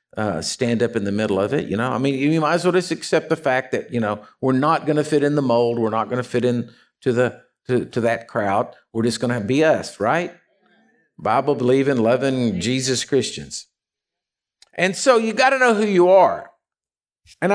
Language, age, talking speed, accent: English, 50-69, 220 wpm, American